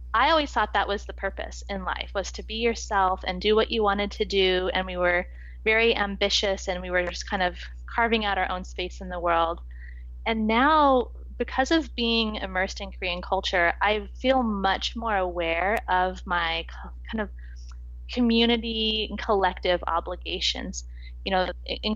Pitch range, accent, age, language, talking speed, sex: 175-220 Hz, American, 20-39, English, 175 wpm, female